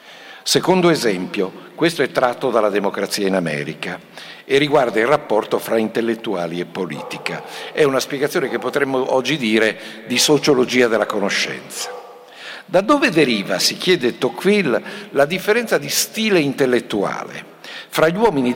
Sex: male